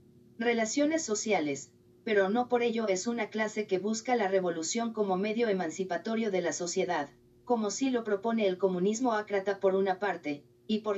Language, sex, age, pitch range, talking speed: Spanish, female, 40-59, 180-220 Hz, 170 wpm